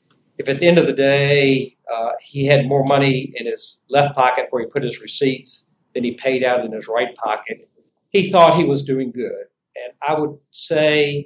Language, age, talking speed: English, 50-69, 210 wpm